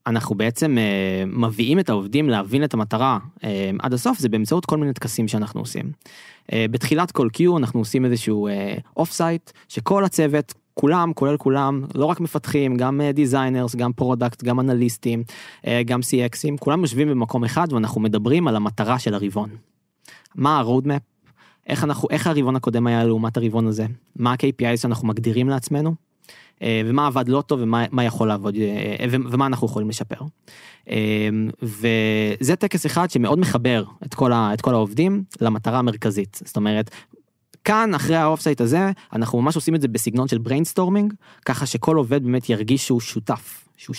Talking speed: 160 wpm